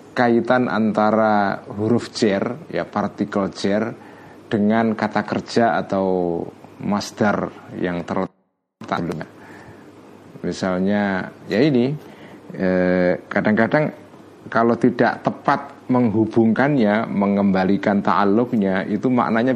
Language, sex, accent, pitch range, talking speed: Indonesian, male, native, 105-140 Hz, 85 wpm